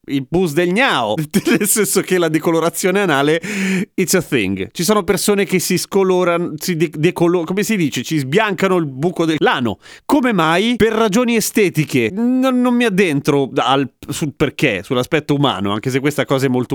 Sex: male